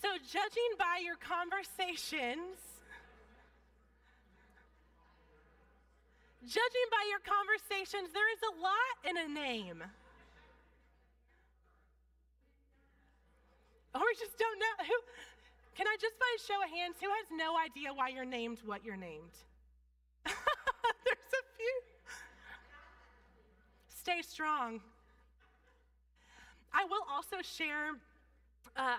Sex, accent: female, American